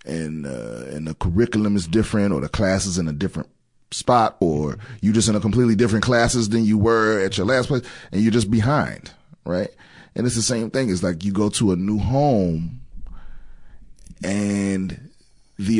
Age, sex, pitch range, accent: 30-49, male, 90-115 Hz, American